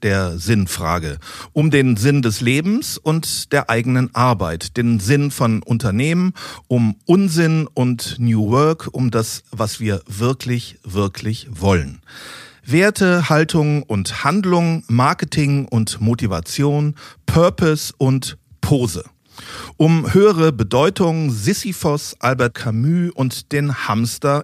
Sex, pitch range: male, 110-150 Hz